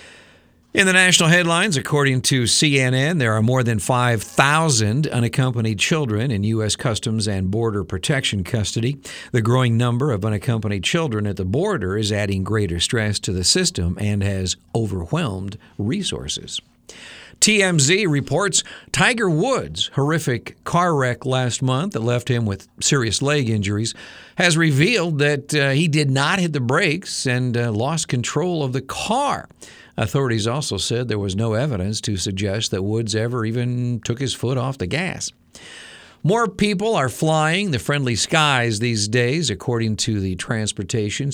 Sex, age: male, 50-69